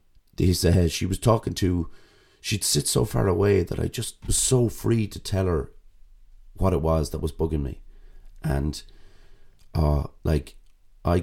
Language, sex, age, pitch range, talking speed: English, male, 30-49, 75-95 Hz, 165 wpm